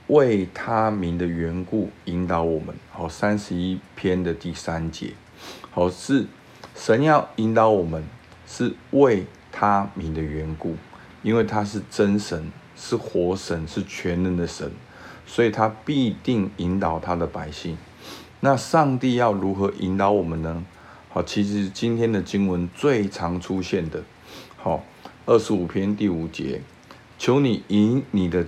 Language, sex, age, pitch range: Chinese, male, 50-69, 85-105 Hz